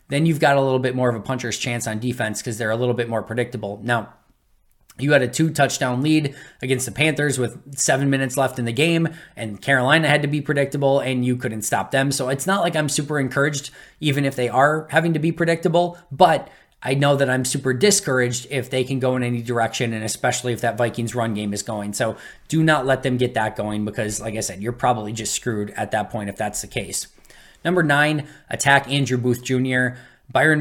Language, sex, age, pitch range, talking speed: English, male, 20-39, 120-140 Hz, 225 wpm